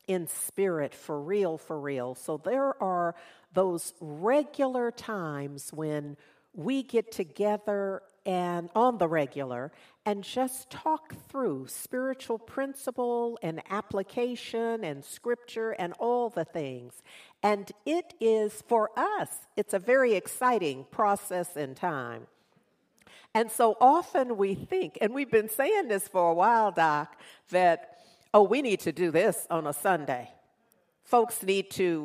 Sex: female